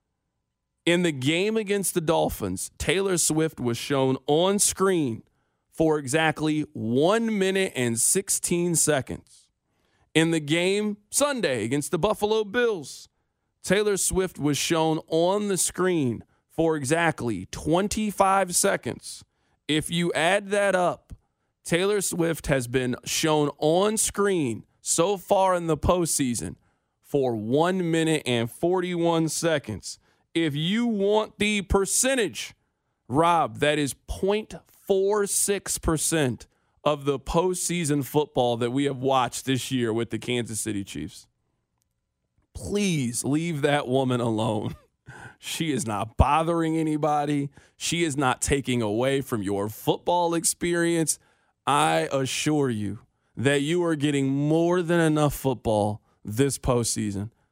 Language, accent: English, American